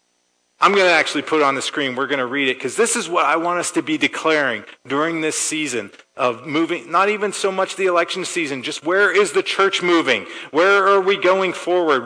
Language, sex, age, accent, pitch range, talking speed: English, male, 40-59, American, 125-180 Hz, 235 wpm